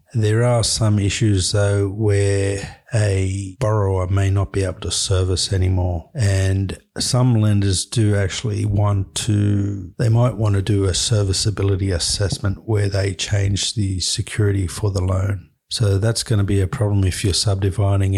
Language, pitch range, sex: English, 95-110 Hz, male